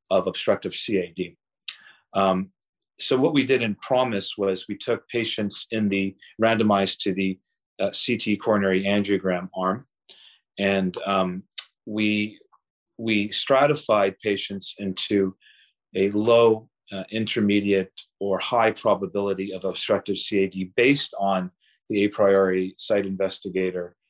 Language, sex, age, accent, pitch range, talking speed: English, male, 40-59, American, 95-110 Hz, 120 wpm